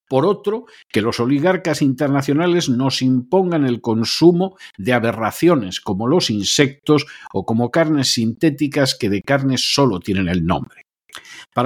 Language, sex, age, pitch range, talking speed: Spanish, male, 50-69, 120-160 Hz, 140 wpm